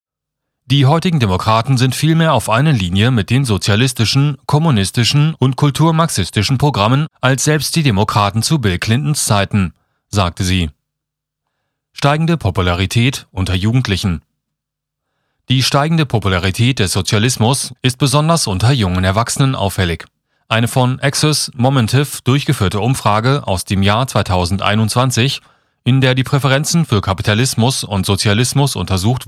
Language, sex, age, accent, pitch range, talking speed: German, male, 40-59, German, 100-135 Hz, 120 wpm